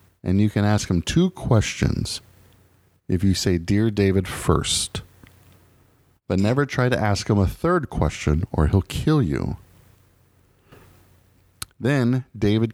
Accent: American